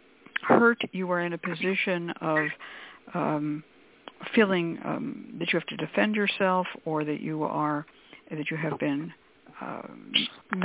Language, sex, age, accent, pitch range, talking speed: English, female, 60-79, American, 160-210 Hz, 140 wpm